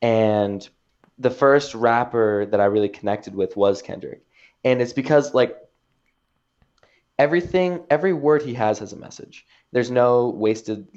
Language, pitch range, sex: English, 110-145 Hz, male